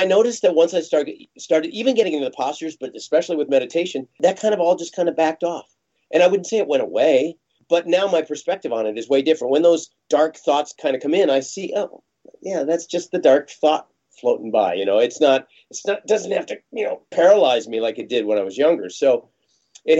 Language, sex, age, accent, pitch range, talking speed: English, male, 40-59, American, 140-195 Hz, 250 wpm